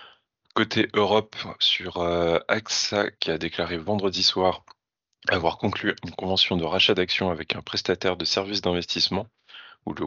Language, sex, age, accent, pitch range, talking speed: French, male, 20-39, French, 85-100 Hz, 145 wpm